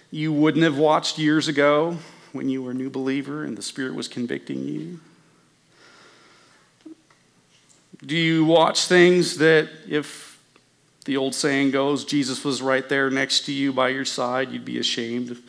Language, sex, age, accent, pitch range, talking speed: English, male, 40-59, American, 130-180 Hz, 160 wpm